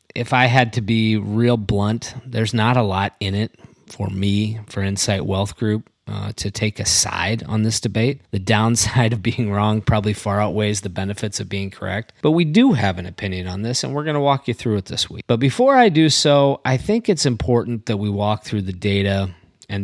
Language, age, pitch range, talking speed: English, 30-49, 100-125 Hz, 225 wpm